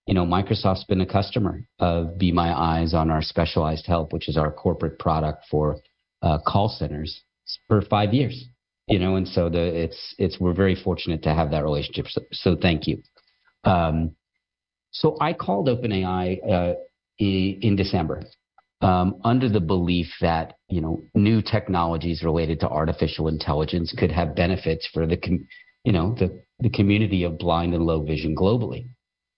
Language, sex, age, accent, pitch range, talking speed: English, male, 50-69, American, 80-100 Hz, 160 wpm